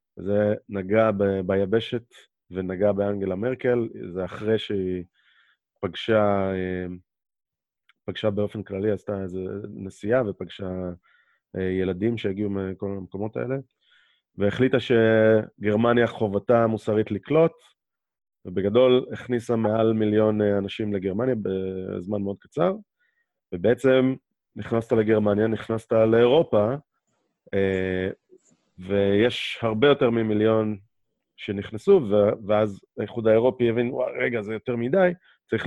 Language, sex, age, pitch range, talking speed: Hebrew, male, 30-49, 95-115 Hz, 95 wpm